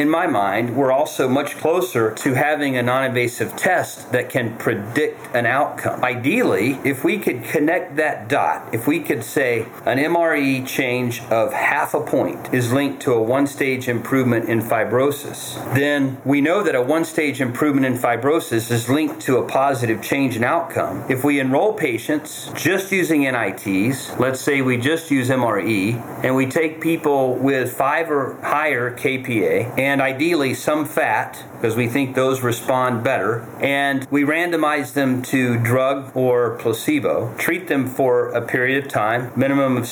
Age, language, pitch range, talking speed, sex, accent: 40-59, English, 120-145 Hz, 165 wpm, male, American